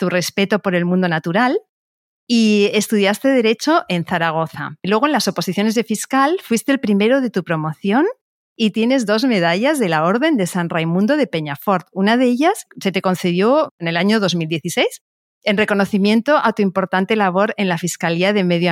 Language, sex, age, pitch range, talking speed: Spanish, female, 40-59, 175-230 Hz, 180 wpm